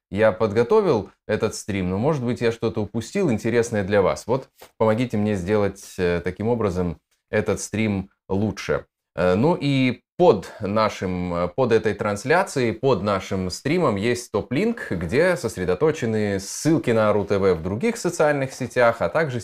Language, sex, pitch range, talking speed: Russian, male, 100-120 Hz, 140 wpm